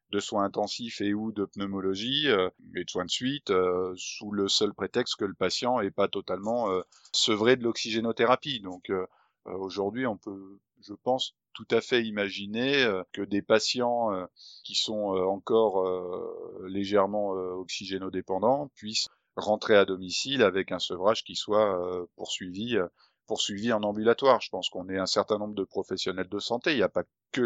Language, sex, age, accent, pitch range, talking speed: French, male, 30-49, French, 95-115 Hz, 155 wpm